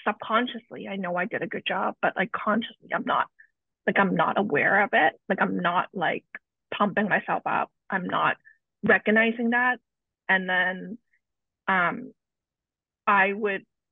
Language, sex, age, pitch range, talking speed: English, female, 20-39, 185-220 Hz, 150 wpm